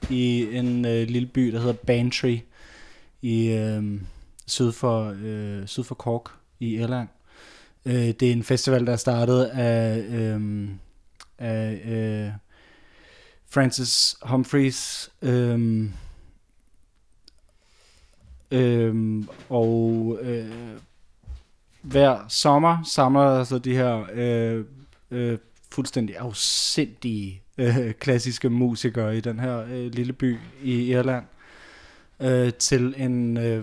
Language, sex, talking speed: English, male, 105 wpm